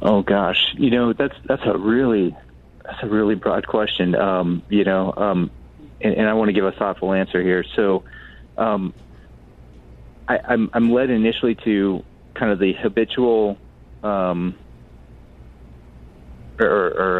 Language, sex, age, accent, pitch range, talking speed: English, male, 30-49, American, 85-105 Hz, 145 wpm